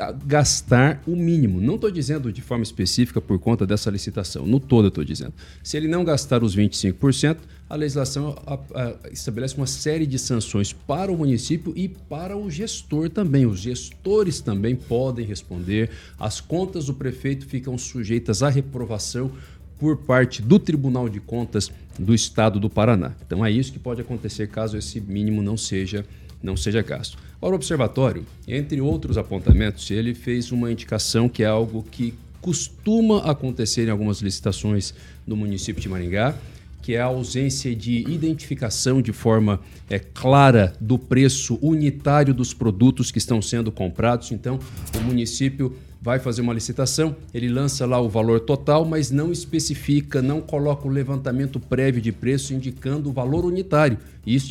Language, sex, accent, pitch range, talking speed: Portuguese, male, Brazilian, 110-150 Hz, 160 wpm